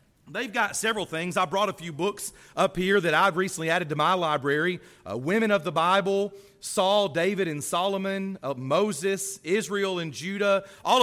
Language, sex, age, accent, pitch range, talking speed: English, male, 40-59, American, 160-205 Hz, 180 wpm